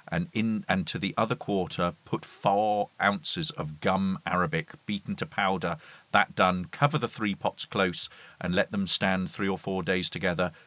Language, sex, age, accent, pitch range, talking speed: English, male, 40-59, British, 90-110 Hz, 180 wpm